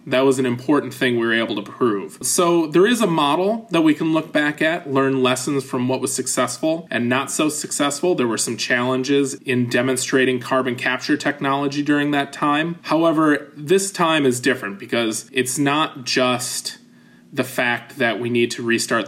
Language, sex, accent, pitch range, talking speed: English, male, American, 115-140 Hz, 185 wpm